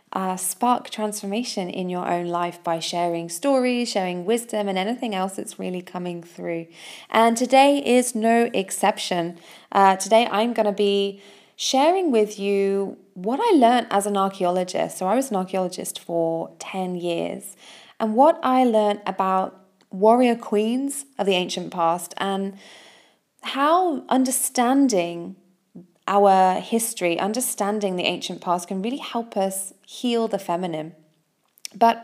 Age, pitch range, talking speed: 20-39, 180-230 Hz, 140 wpm